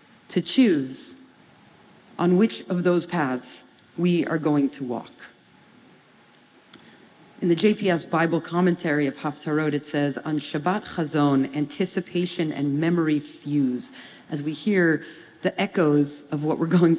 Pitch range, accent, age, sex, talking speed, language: 160-200 Hz, American, 40-59, female, 130 wpm, English